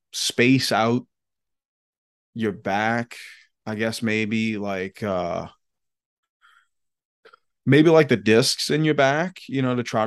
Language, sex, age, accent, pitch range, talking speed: English, male, 20-39, American, 105-120 Hz, 120 wpm